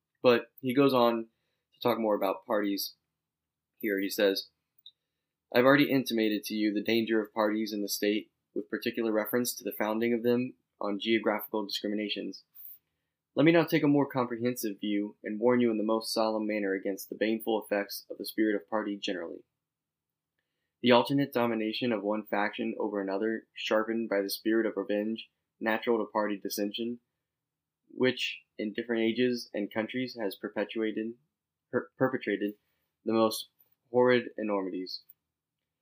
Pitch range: 105-120 Hz